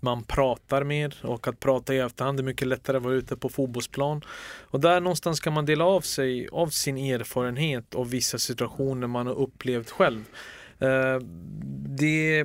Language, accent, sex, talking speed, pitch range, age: Swedish, native, male, 170 wpm, 125-160 Hz, 30-49